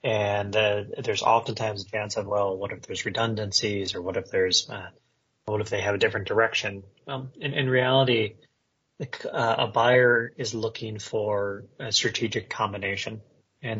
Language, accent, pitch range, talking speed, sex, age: English, American, 110-125 Hz, 165 wpm, male, 30-49